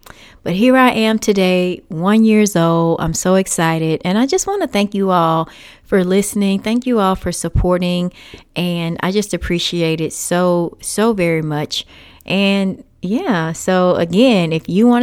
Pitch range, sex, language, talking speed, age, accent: 160-215 Hz, female, English, 170 wpm, 30-49, American